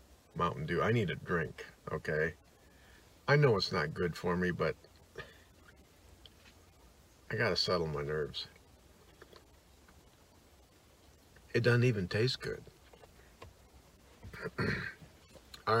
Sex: male